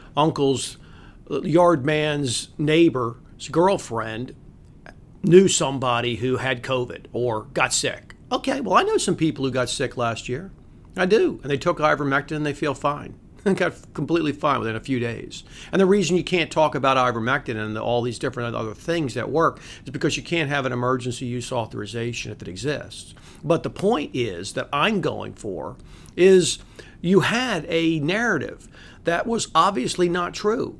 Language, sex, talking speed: English, male, 170 wpm